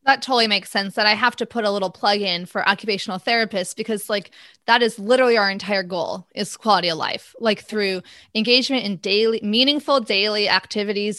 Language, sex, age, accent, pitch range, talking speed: English, female, 20-39, American, 195-245 Hz, 195 wpm